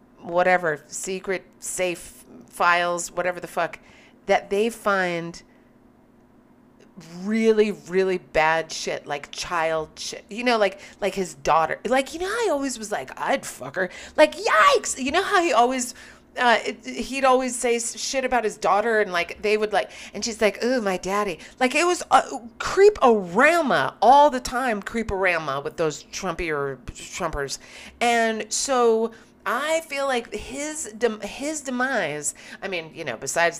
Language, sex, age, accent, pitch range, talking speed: English, female, 40-59, American, 180-250 Hz, 155 wpm